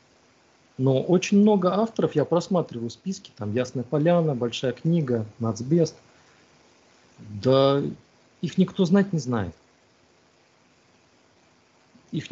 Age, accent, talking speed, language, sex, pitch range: 40-59, native, 95 wpm, Russian, male, 125-170 Hz